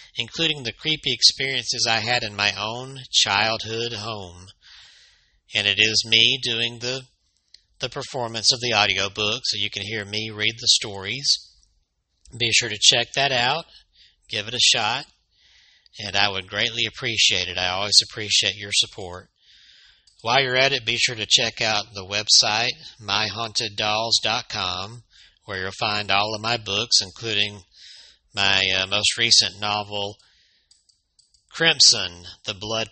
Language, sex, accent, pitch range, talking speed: English, male, American, 100-120 Hz, 145 wpm